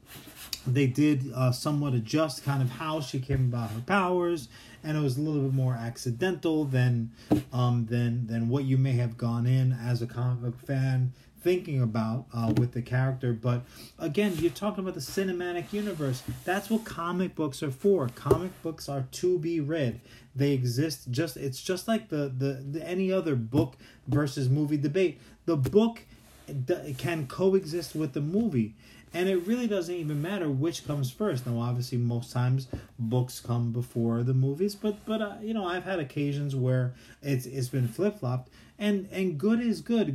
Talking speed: 180 wpm